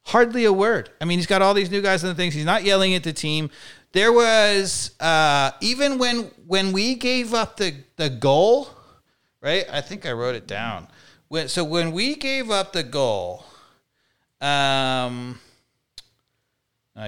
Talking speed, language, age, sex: 165 wpm, English, 40-59, male